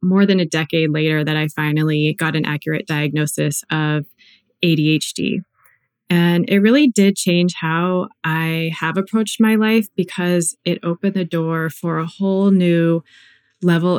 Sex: female